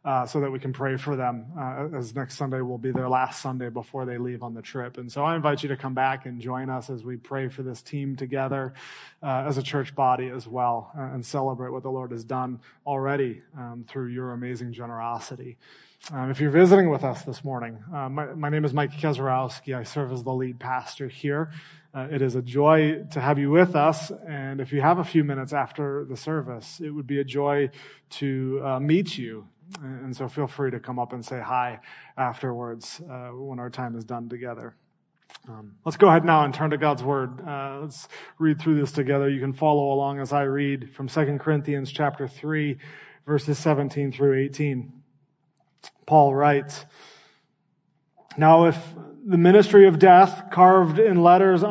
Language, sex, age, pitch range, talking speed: English, male, 30-49, 130-150 Hz, 200 wpm